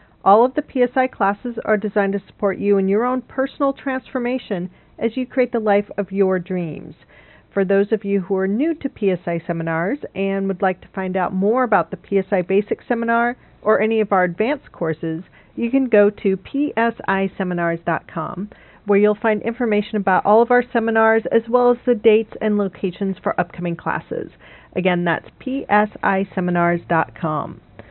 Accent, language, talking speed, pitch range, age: American, English, 170 wpm, 185-235 Hz, 40-59